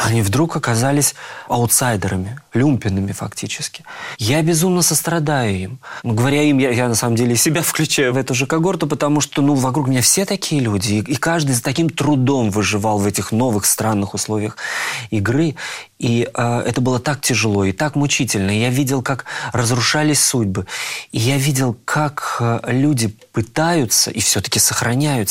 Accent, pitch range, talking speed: native, 110-150 Hz, 165 wpm